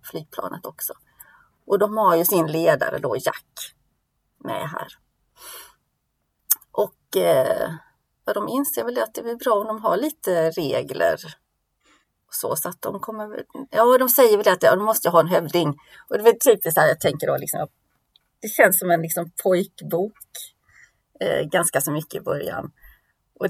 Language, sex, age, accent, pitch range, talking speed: Swedish, female, 30-49, native, 170-265 Hz, 175 wpm